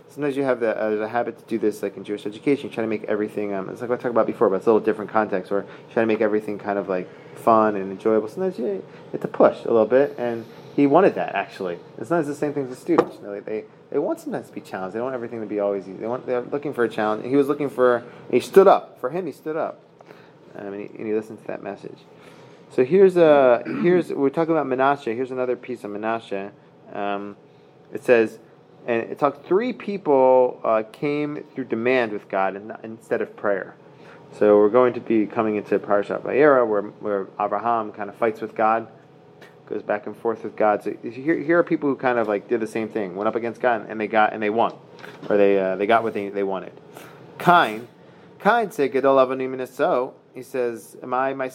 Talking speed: 240 wpm